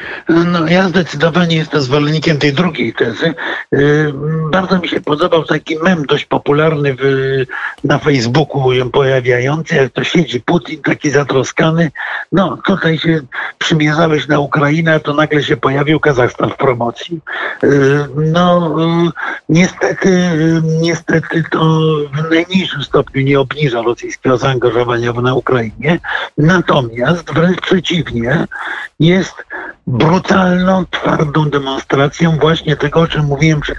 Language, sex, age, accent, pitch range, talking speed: Polish, male, 50-69, native, 140-170 Hz, 120 wpm